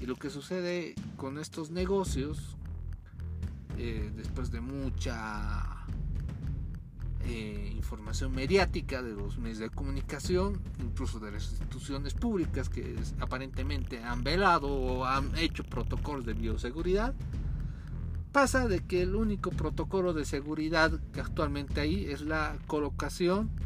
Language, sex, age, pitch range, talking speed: Spanish, male, 50-69, 95-155 Hz, 120 wpm